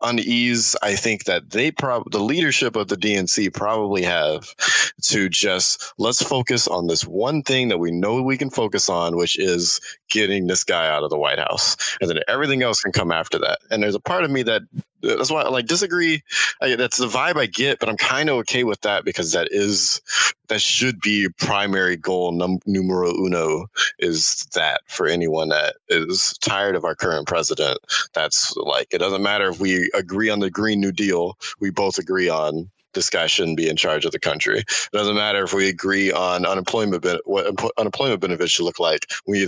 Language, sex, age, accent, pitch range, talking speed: English, male, 20-39, American, 90-125 Hz, 200 wpm